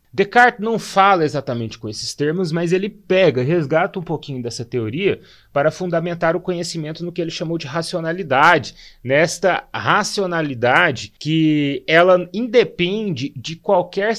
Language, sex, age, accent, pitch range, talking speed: Portuguese, male, 30-49, Brazilian, 140-185 Hz, 135 wpm